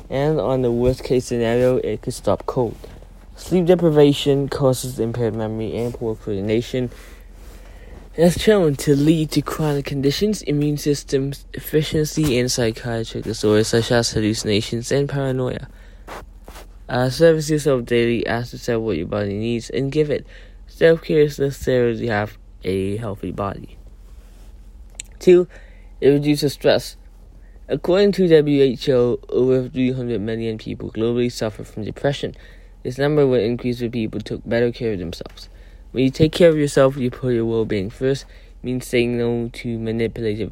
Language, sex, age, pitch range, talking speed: English, male, 20-39, 110-140 Hz, 145 wpm